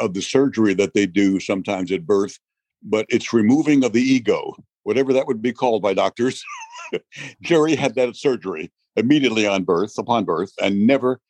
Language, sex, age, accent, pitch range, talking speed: English, male, 60-79, American, 100-130 Hz, 175 wpm